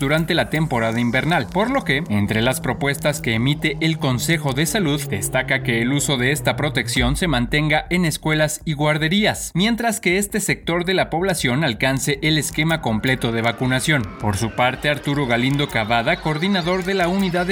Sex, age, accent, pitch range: male, 30-49, Mexican, 130-170 Hz